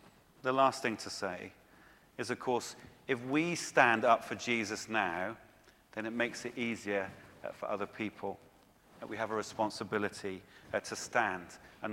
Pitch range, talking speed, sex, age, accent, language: 105-135 Hz, 155 wpm, male, 40-59, British, English